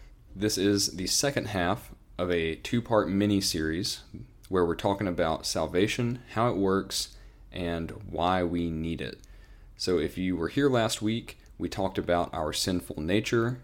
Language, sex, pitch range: English, male, 85-105 Hz